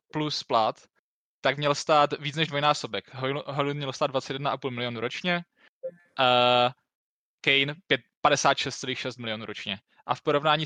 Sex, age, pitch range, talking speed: male, 20-39, 130-150 Hz, 130 wpm